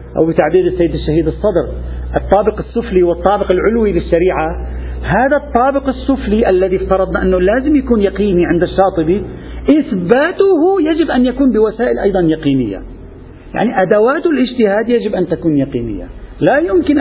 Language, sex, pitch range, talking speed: Arabic, male, 165-235 Hz, 130 wpm